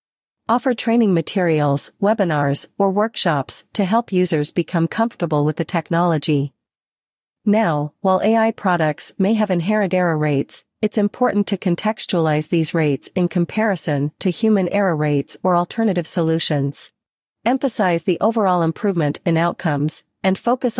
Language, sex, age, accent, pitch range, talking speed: English, female, 40-59, American, 160-205 Hz, 135 wpm